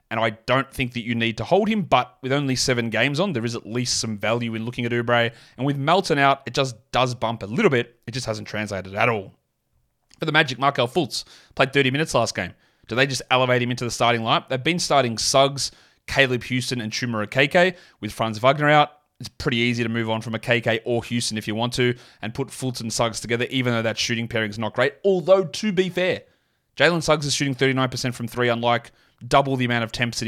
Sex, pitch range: male, 110-130 Hz